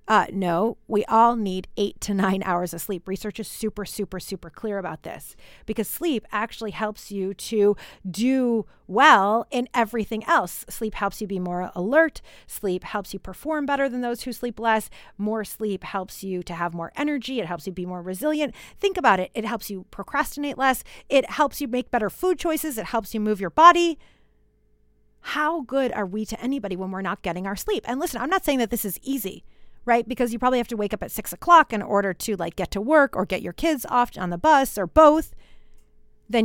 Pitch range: 190-250 Hz